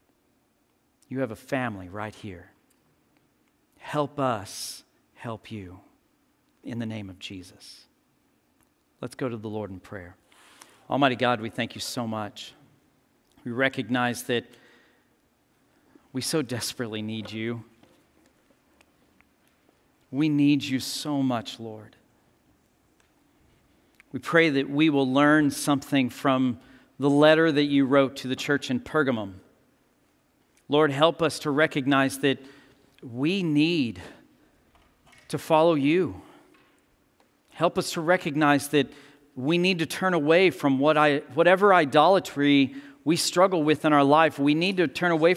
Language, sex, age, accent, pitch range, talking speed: English, male, 50-69, American, 125-160 Hz, 125 wpm